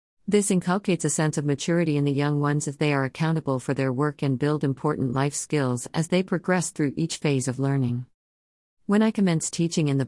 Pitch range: 130-160 Hz